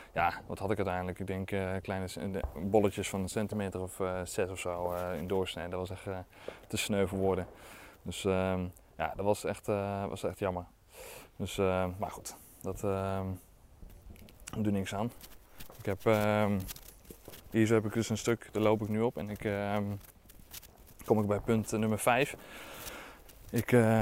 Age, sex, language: 20-39, male, Dutch